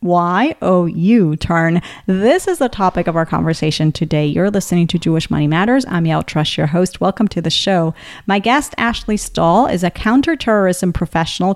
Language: English